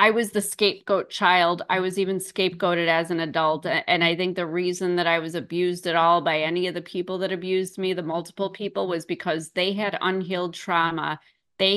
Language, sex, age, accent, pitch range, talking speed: English, female, 30-49, American, 175-205 Hz, 210 wpm